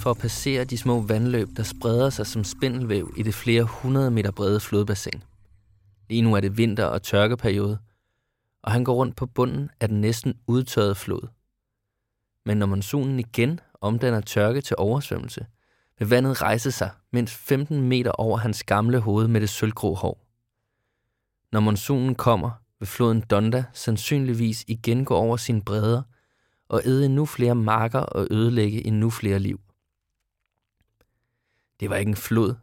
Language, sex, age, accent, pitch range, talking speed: Danish, male, 20-39, native, 105-120 Hz, 160 wpm